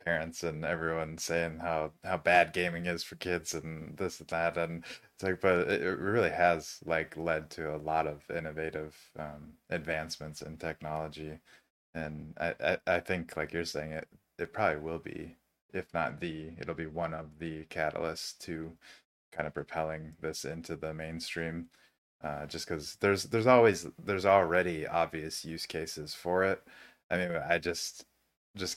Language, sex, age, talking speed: English, male, 20-39, 170 wpm